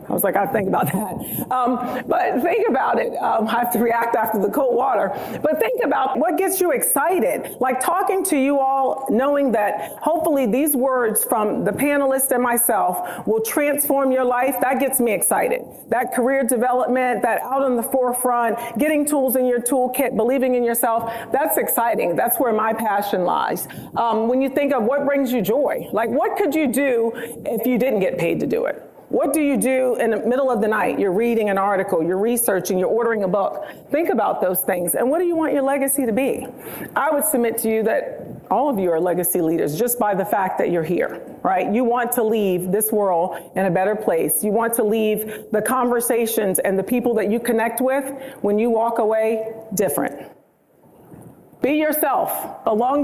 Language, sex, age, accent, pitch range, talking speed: English, female, 40-59, American, 220-270 Hz, 205 wpm